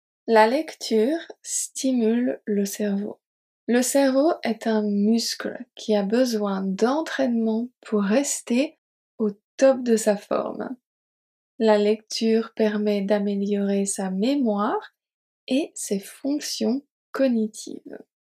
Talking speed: 100 wpm